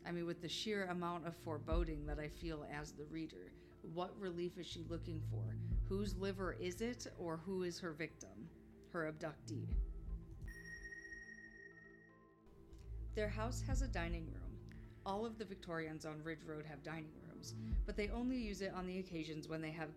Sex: female